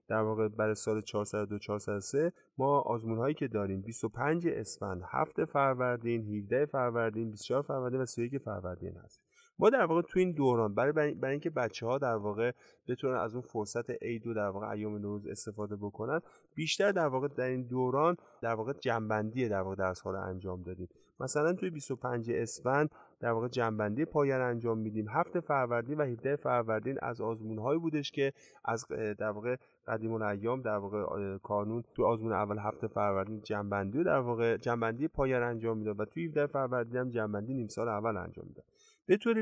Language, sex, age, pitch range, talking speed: Persian, male, 30-49, 110-140 Hz, 175 wpm